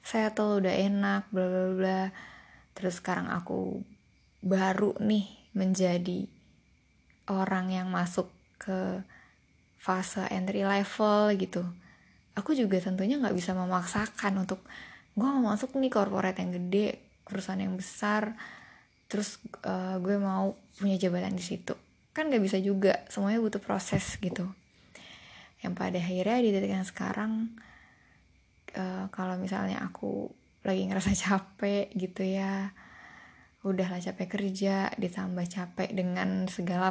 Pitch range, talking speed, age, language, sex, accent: 185-210 Hz, 120 wpm, 20-39, Indonesian, female, native